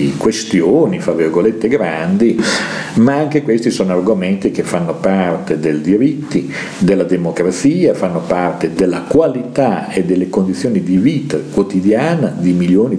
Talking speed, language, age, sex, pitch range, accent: 130 wpm, Italian, 50-69, male, 90-120 Hz, native